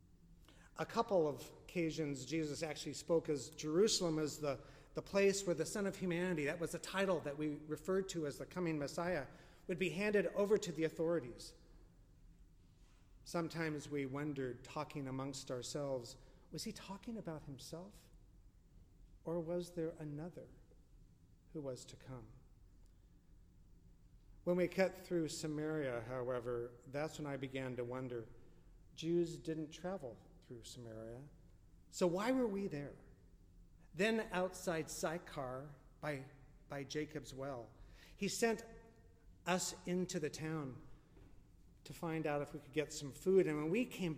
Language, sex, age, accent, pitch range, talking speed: English, male, 40-59, American, 125-175 Hz, 140 wpm